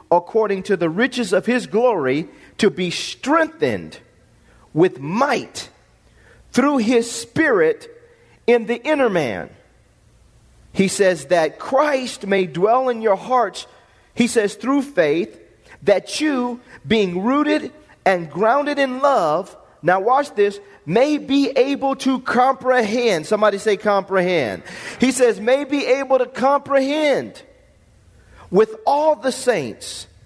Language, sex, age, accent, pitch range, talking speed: English, male, 40-59, American, 170-255 Hz, 125 wpm